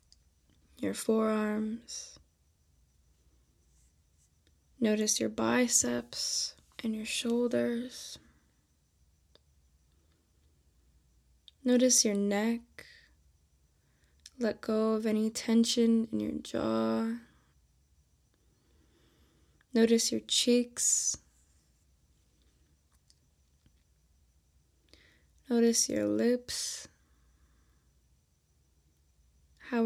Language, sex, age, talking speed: English, female, 10-29, 50 wpm